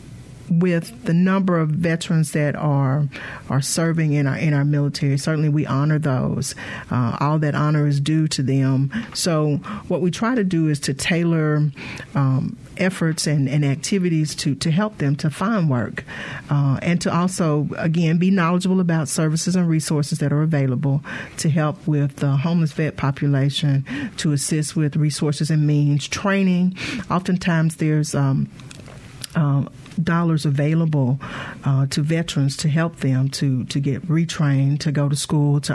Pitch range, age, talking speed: 140-160 Hz, 40-59, 165 wpm